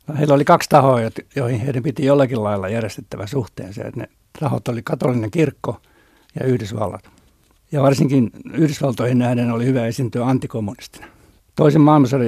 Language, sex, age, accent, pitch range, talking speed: Finnish, male, 60-79, native, 115-140 Hz, 145 wpm